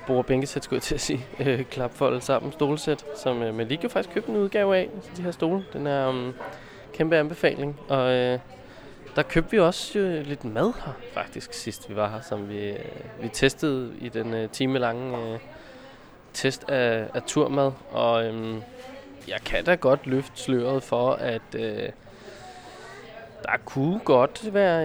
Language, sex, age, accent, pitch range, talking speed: Danish, male, 20-39, native, 125-170 Hz, 180 wpm